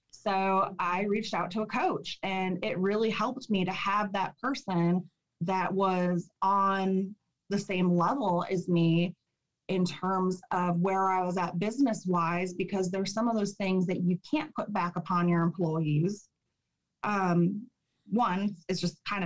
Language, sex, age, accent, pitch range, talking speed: English, female, 20-39, American, 175-205 Hz, 160 wpm